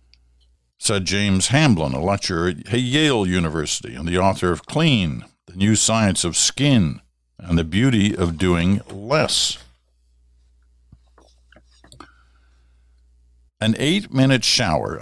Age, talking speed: 60-79, 110 wpm